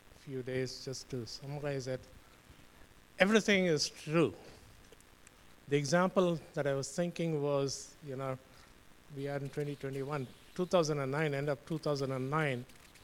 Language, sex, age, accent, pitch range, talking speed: English, male, 50-69, Indian, 130-160 Hz, 120 wpm